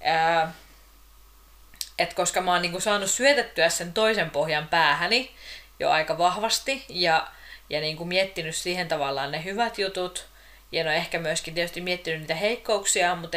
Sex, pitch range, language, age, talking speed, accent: female, 160-195 Hz, Finnish, 30-49, 150 wpm, native